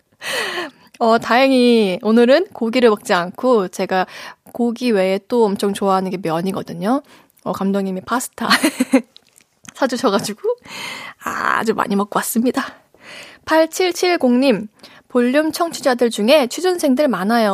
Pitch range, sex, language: 210-270 Hz, female, Korean